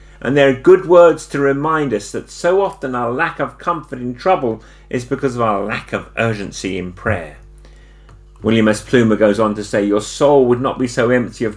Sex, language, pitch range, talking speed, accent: male, English, 110-150 Hz, 215 wpm, British